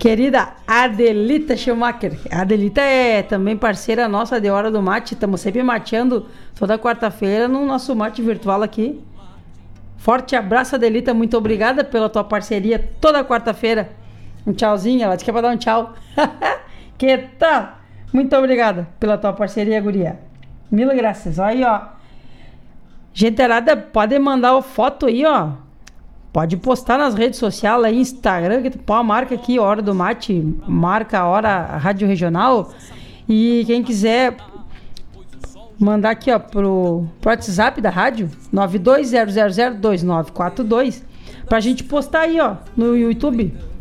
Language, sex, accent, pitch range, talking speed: Portuguese, female, Brazilian, 200-250 Hz, 140 wpm